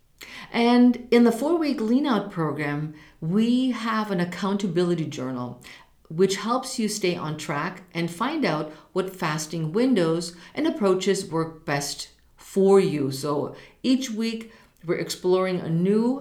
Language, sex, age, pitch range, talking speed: English, female, 50-69, 155-215 Hz, 140 wpm